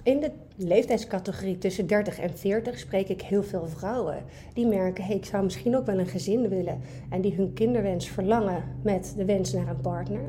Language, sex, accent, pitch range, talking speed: Dutch, female, Dutch, 180-215 Hz, 190 wpm